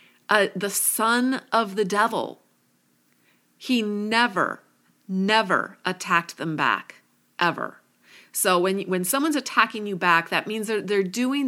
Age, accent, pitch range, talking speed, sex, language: 30-49, American, 175-220 Hz, 130 wpm, female, English